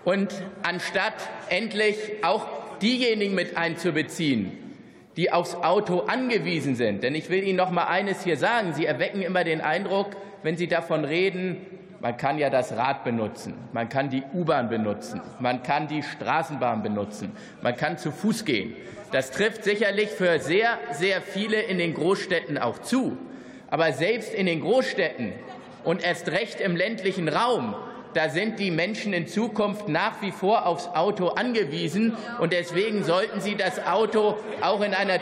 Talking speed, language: 160 wpm, German